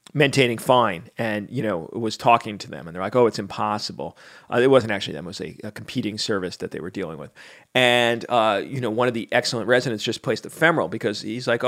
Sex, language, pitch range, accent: male, English, 105-125 Hz, American